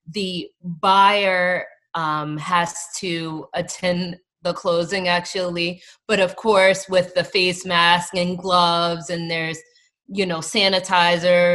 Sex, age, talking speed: female, 20-39, 120 wpm